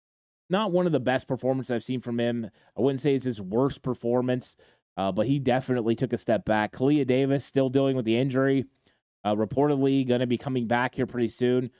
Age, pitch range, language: 20-39, 115-135 Hz, English